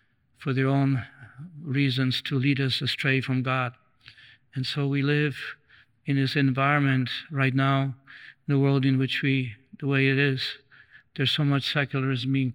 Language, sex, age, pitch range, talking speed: English, male, 50-69, 130-140 Hz, 165 wpm